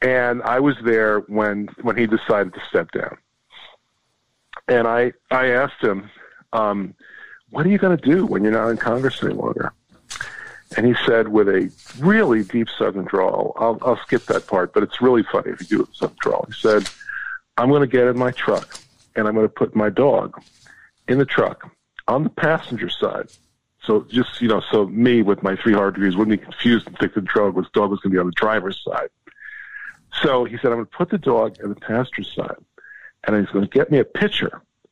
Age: 50-69